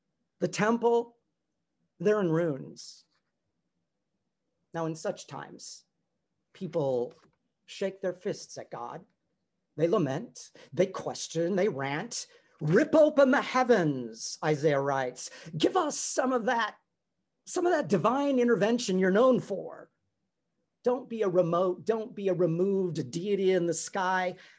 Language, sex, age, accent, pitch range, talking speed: English, male, 40-59, American, 160-220 Hz, 125 wpm